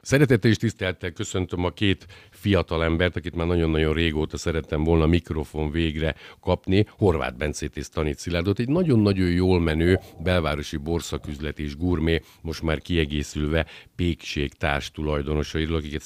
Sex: male